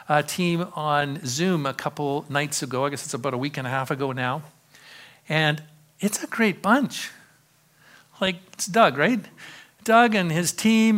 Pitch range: 140-185 Hz